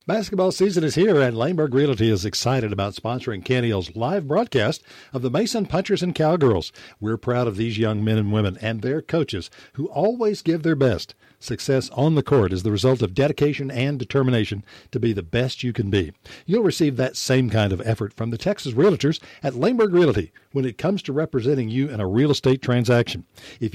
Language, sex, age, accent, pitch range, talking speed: English, male, 60-79, American, 110-150 Hz, 200 wpm